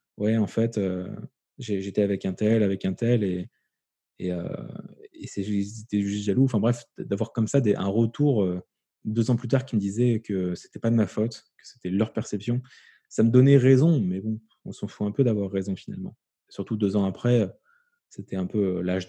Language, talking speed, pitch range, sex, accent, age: French, 215 wpm, 100-130 Hz, male, French, 20-39